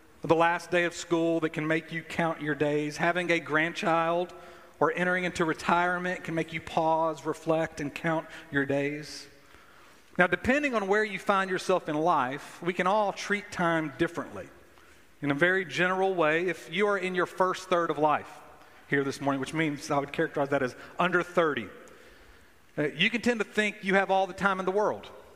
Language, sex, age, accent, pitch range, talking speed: English, male, 40-59, American, 150-180 Hz, 195 wpm